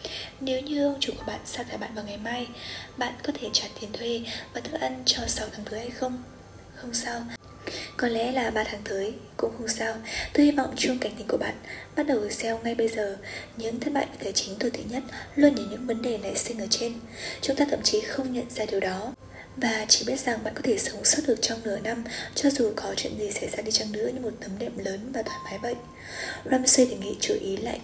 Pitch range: 210-255 Hz